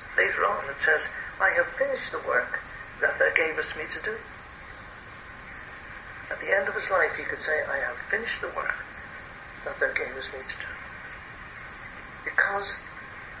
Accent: British